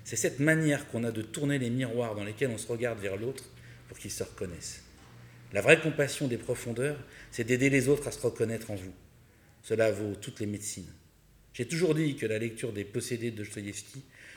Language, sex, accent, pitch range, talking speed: French, male, French, 105-130 Hz, 205 wpm